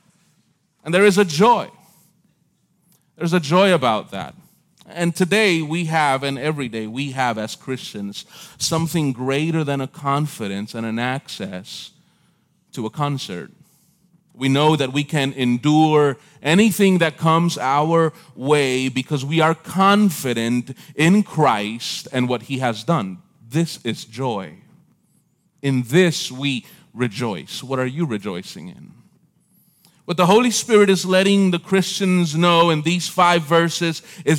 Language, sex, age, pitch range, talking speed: English, male, 30-49, 145-185 Hz, 140 wpm